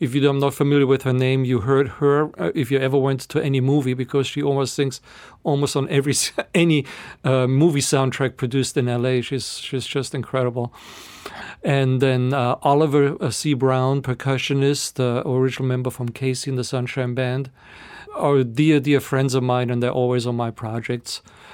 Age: 40-59